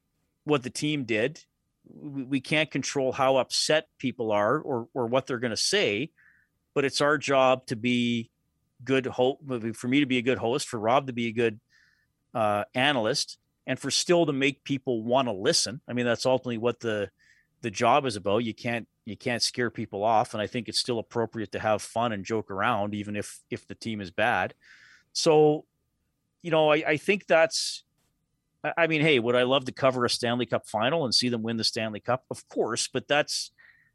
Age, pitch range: 40-59, 110-135 Hz